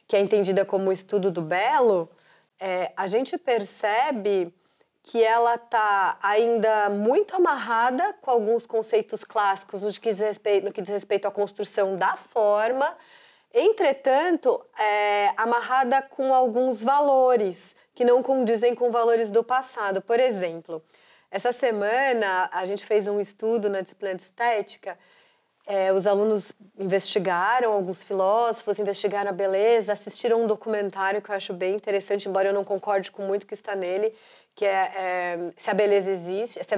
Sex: female